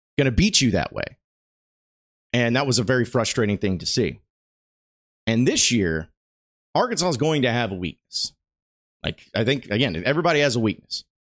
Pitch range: 100-140 Hz